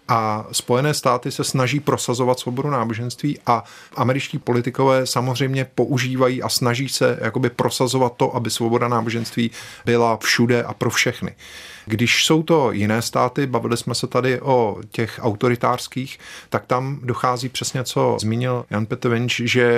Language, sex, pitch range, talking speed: Czech, male, 120-140 Hz, 145 wpm